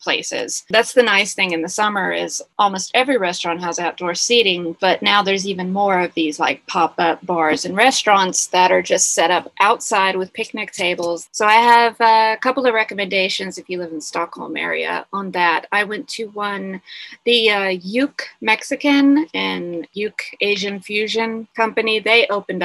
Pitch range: 180-225 Hz